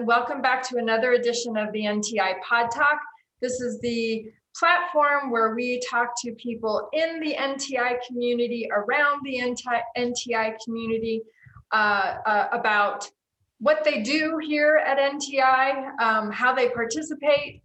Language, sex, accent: English, female, American